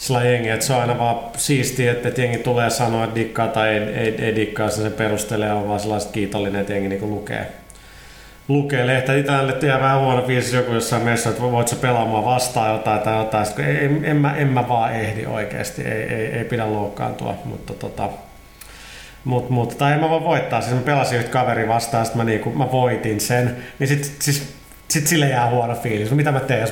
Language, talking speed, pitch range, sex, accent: Finnish, 210 wpm, 110-135 Hz, male, native